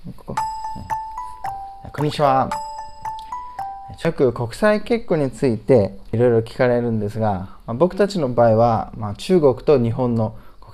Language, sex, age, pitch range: Japanese, male, 20-39, 100-140 Hz